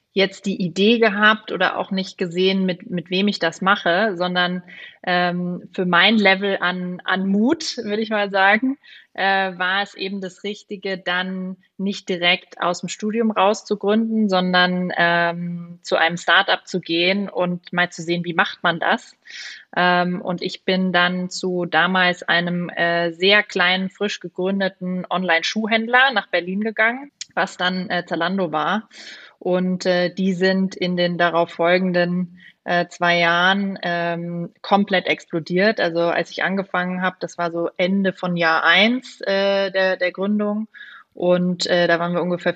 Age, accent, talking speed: 20-39, German, 155 wpm